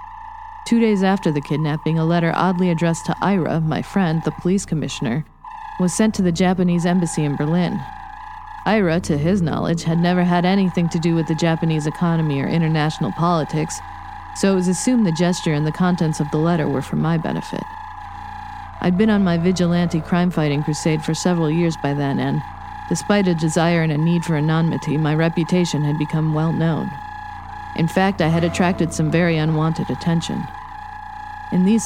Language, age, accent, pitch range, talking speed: English, 40-59, American, 155-185 Hz, 175 wpm